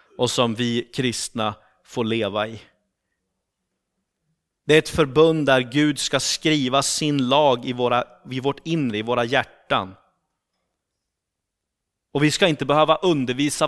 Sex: male